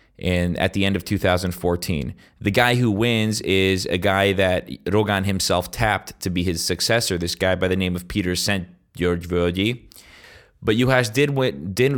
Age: 20-39